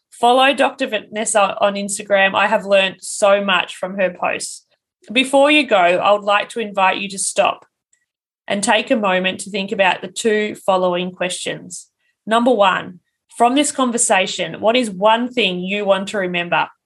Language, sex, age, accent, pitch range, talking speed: English, female, 20-39, Australian, 200-265 Hz, 170 wpm